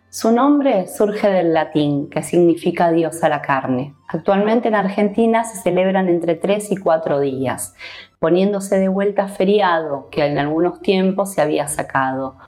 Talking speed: 155 wpm